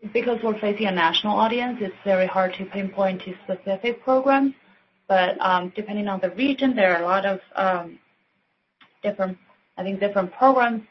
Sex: female